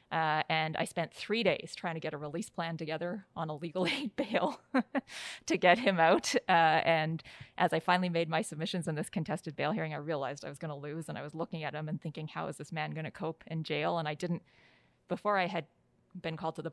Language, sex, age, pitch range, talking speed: English, female, 30-49, 155-190 Hz, 250 wpm